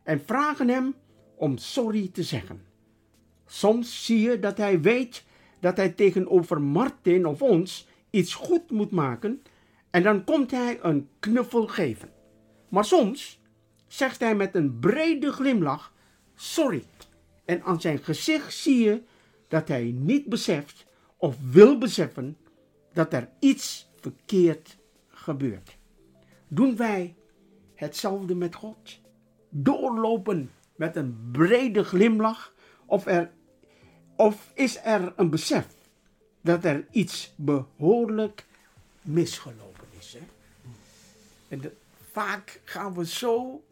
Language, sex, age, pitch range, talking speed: Dutch, male, 60-79, 145-230 Hz, 115 wpm